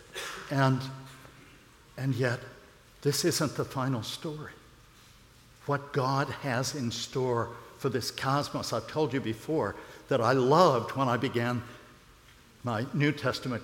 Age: 60-79